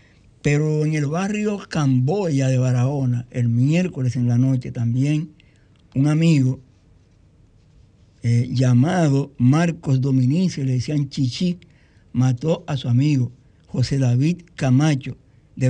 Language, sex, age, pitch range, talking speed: Spanish, male, 60-79, 125-165 Hz, 115 wpm